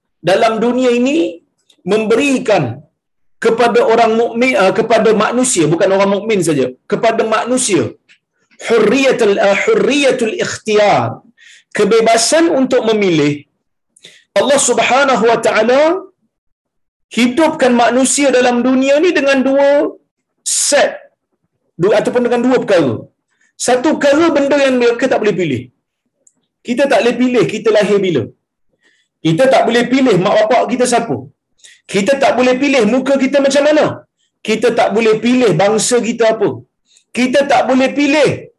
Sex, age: male, 40-59